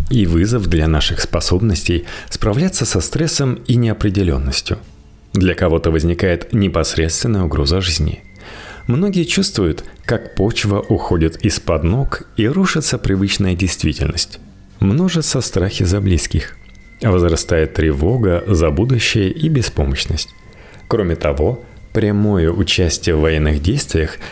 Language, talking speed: Russian, 110 wpm